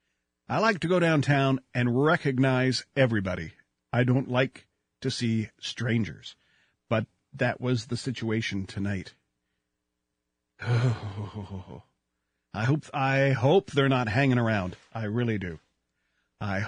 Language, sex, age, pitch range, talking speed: English, male, 40-59, 110-140 Hz, 120 wpm